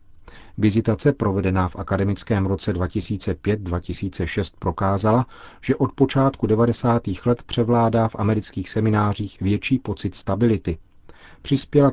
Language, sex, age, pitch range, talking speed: Czech, male, 40-59, 95-115 Hz, 100 wpm